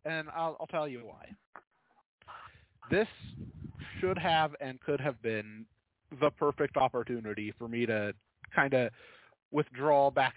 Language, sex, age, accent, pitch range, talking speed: English, male, 30-49, American, 115-150 Hz, 135 wpm